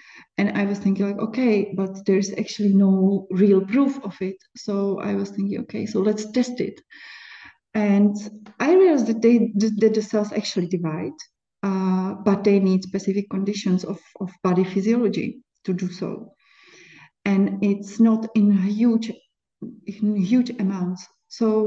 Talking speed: 150 wpm